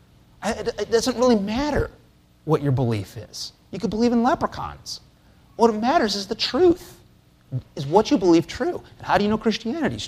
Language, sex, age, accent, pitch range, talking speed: English, male, 30-49, American, 105-160 Hz, 175 wpm